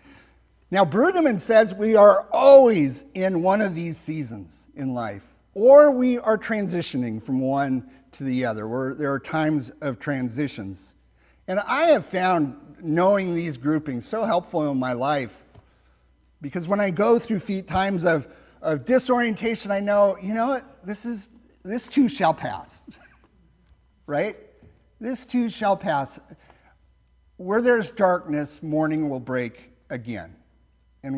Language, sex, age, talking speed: English, male, 50-69, 140 wpm